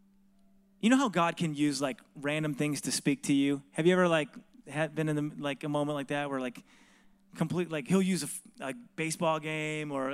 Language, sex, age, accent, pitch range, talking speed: English, male, 30-49, American, 140-195 Hz, 215 wpm